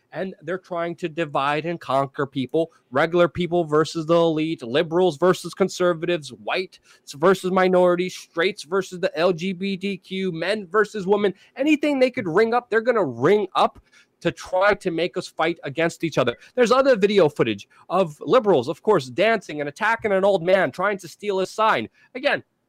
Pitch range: 160-205 Hz